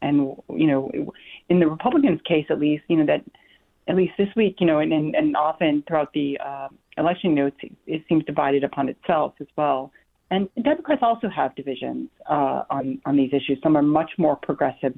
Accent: American